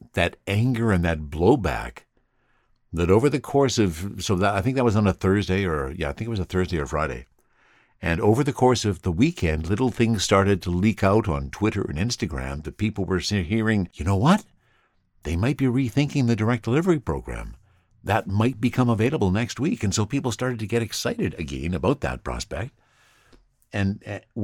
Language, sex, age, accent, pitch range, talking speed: English, male, 60-79, American, 90-120 Hz, 195 wpm